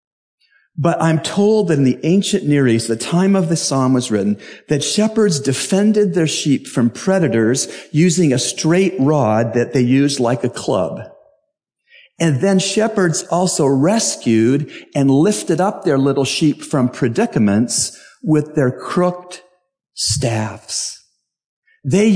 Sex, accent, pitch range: male, American, 105-150 Hz